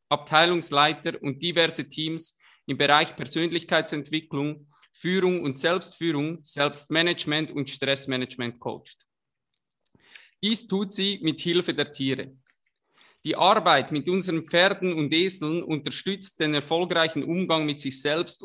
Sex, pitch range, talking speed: male, 140-175 Hz, 115 wpm